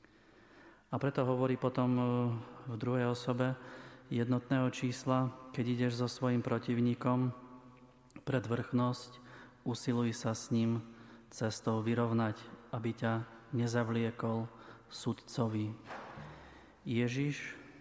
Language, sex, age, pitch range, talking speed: Slovak, male, 30-49, 115-125 Hz, 90 wpm